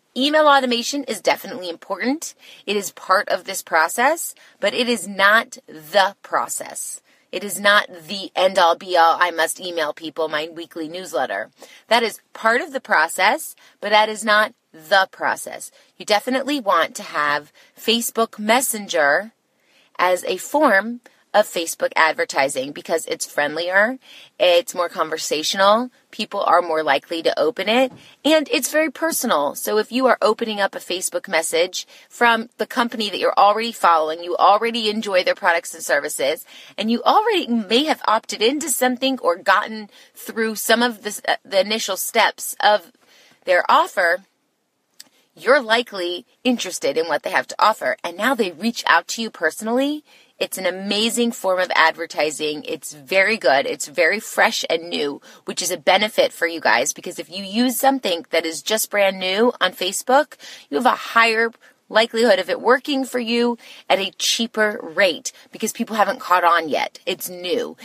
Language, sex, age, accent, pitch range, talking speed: English, female, 30-49, American, 180-250 Hz, 165 wpm